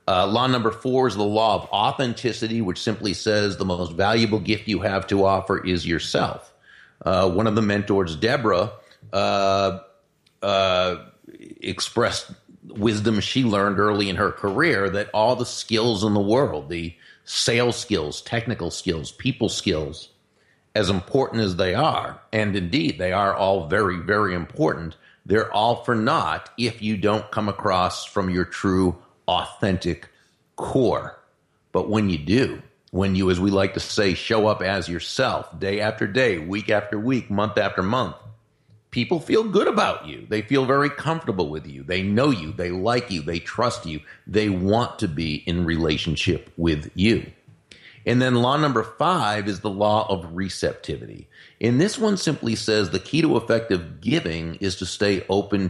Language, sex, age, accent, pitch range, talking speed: English, male, 40-59, American, 90-115 Hz, 165 wpm